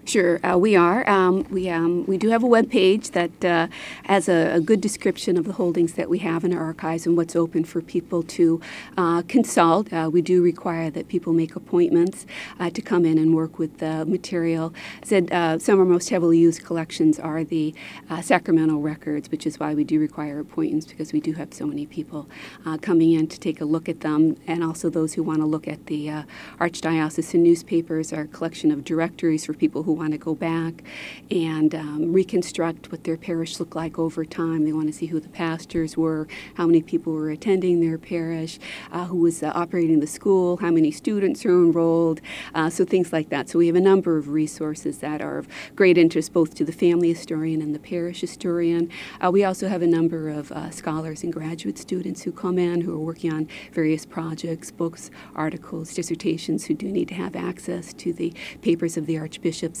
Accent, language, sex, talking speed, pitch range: American, English, female, 215 wpm, 160-175 Hz